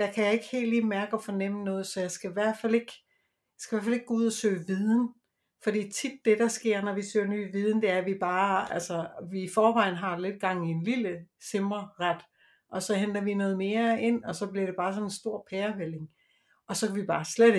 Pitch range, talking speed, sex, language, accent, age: 185-220 Hz, 255 wpm, female, Danish, native, 60-79